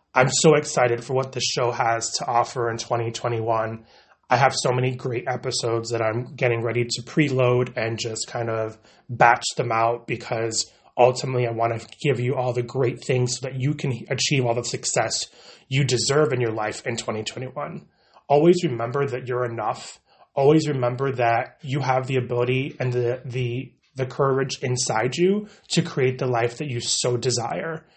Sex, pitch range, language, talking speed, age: male, 120-135 Hz, English, 190 wpm, 30-49